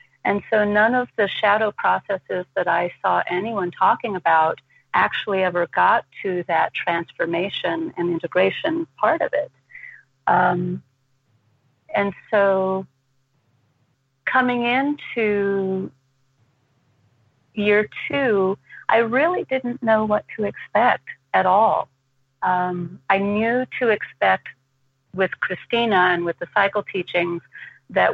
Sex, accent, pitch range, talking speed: female, American, 135-210 Hz, 115 wpm